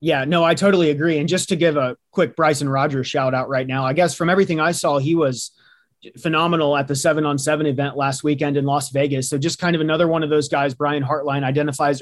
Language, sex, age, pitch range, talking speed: English, male, 30-49, 140-170 Hz, 245 wpm